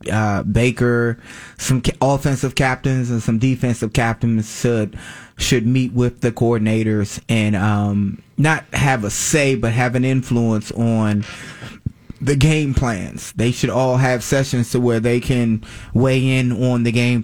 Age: 20-39